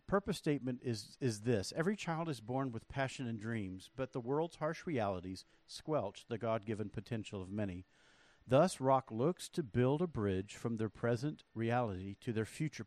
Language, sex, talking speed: English, male, 175 wpm